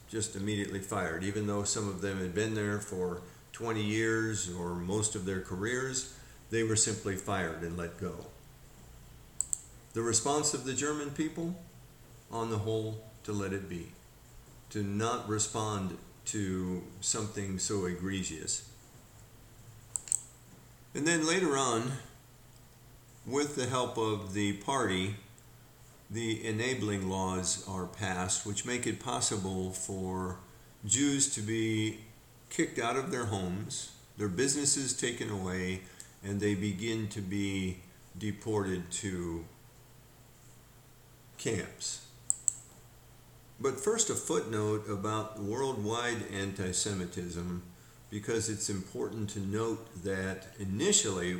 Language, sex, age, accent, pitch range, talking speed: English, male, 50-69, American, 95-120 Hz, 115 wpm